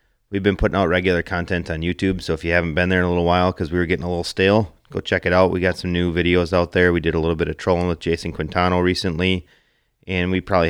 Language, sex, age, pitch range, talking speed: English, male, 30-49, 85-95 Hz, 280 wpm